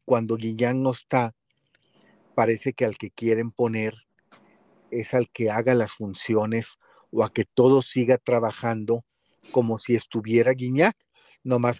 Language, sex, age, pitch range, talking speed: Spanish, male, 40-59, 115-130 Hz, 135 wpm